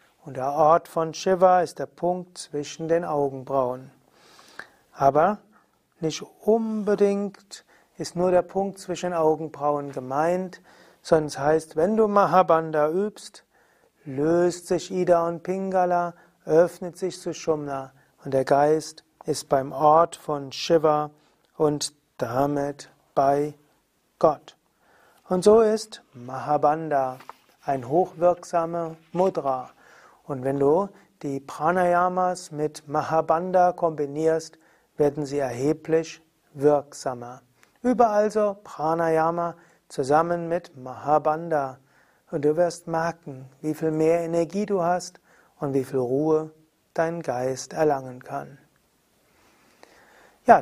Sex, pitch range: male, 145-175 Hz